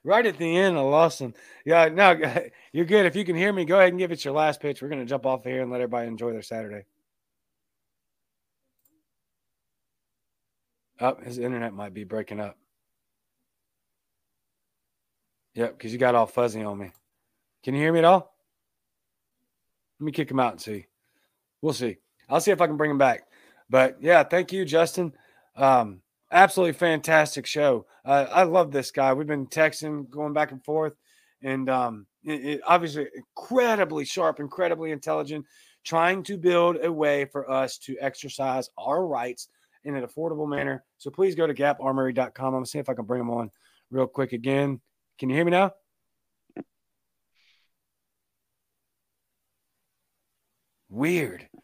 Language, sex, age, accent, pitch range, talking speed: English, male, 30-49, American, 130-170 Hz, 165 wpm